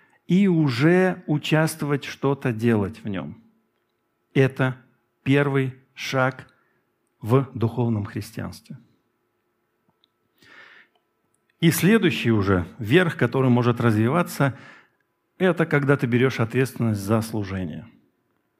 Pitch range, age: 115-155 Hz, 50-69